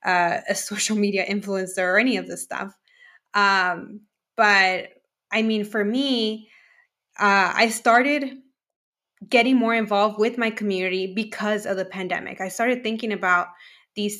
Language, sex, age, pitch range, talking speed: English, female, 20-39, 185-215 Hz, 145 wpm